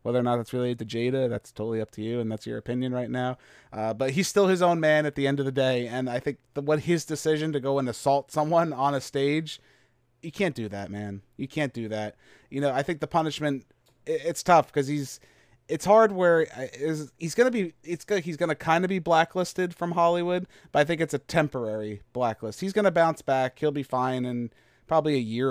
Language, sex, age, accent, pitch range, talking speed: English, male, 30-49, American, 120-165 Hz, 230 wpm